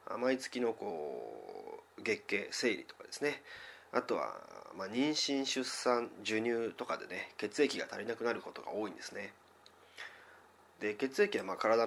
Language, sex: Japanese, male